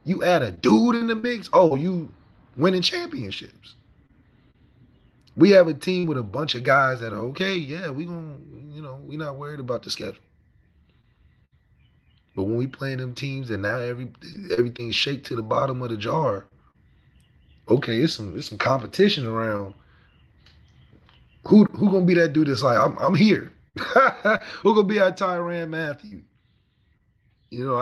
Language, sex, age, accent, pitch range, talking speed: English, male, 30-49, American, 115-155 Hz, 165 wpm